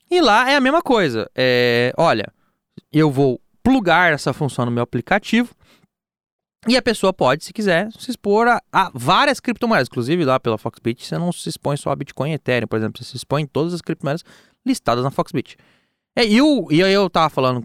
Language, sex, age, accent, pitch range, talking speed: Portuguese, male, 20-39, Brazilian, 135-230 Hz, 205 wpm